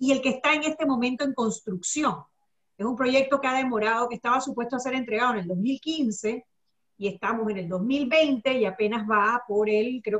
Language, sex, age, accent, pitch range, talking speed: Spanish, female, 40-59, American, 210-270 Hz, 205 wpm